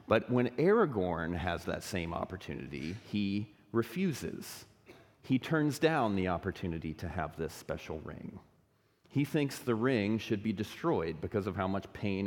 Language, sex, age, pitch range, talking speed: English, male, 40-59, 95-115 Hz, 150 wpm